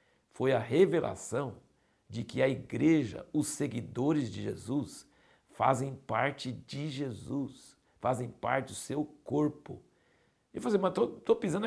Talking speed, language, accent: 135 wpm, Portuguese, Brazilian